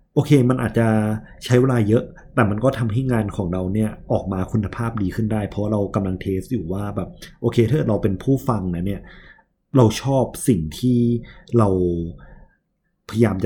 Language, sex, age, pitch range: Thai, male, 30-49, 95-125 Hz